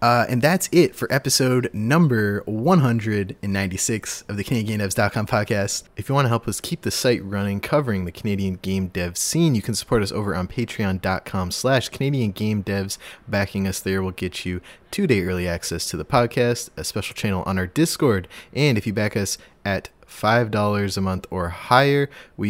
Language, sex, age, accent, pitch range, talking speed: English, male, 20-39, American, 95-120 Hz, 180 wpm